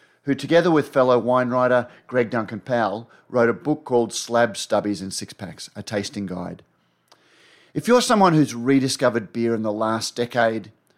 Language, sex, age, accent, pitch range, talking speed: English, male, 30-49, Australian, 105-135 Hz, 170 wpm